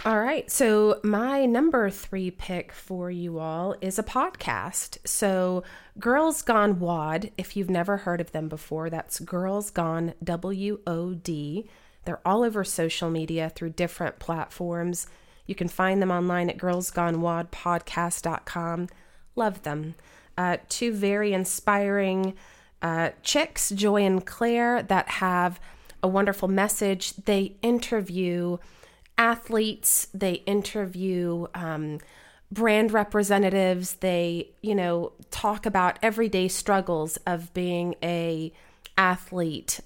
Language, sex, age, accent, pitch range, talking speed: English, female, 30-49, American, 170-200 Hz, 115 wpm